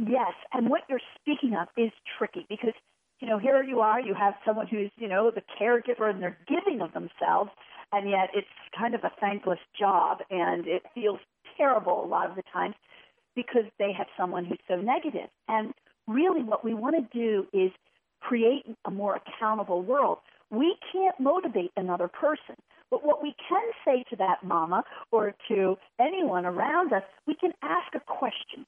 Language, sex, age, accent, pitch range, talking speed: English, female, 50-69, American, 205-300 Hz, 185 wpm